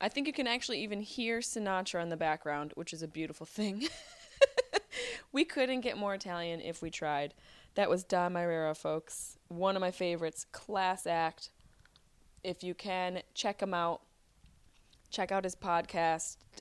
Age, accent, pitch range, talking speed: 20-39, American, 170-205 Hz, 165 wpm